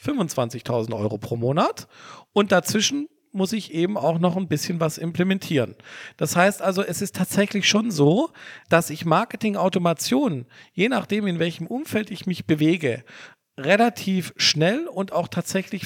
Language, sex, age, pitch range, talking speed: German, male, 40-59, 150-190 Hz, 150 wpm